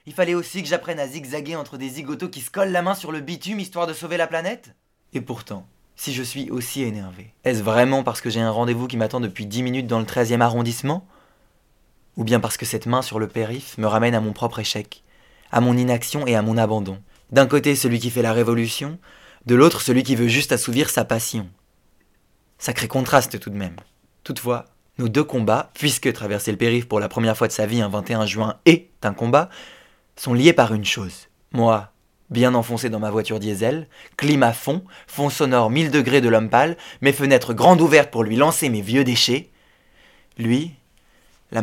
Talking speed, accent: 205 wpm, French